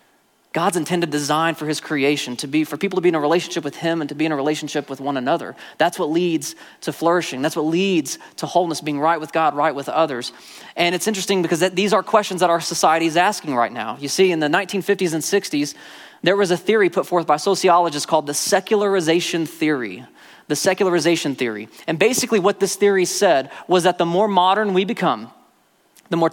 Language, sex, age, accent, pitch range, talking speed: English, male, 20-39, American, 150-185 Hz, 215 wpm